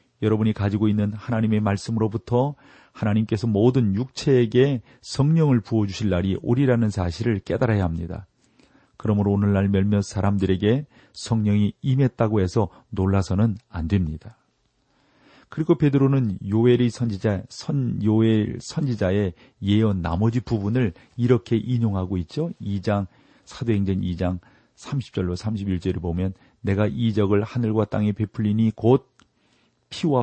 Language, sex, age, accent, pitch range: Korean, male, 40-59, native, 100-125 Hz